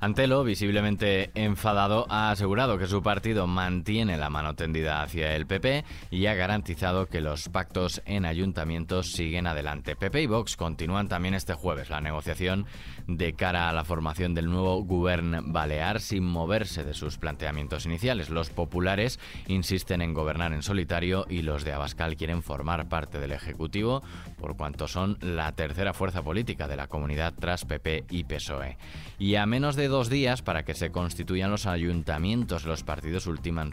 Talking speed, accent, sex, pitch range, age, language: 165 wpm, Spanish, male, 80-95 Hz, 20-39, Spanish